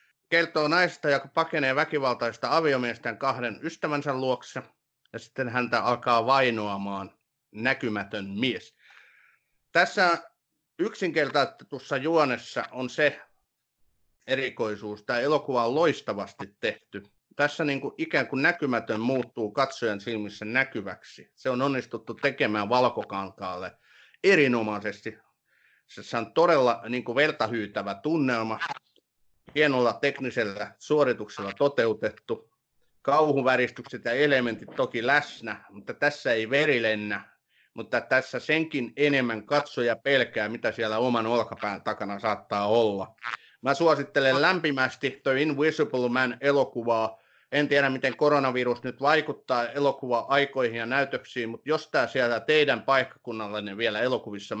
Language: Finnish